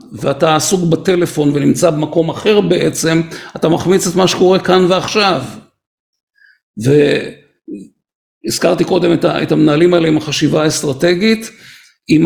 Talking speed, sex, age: 115 wpm, male, 50-69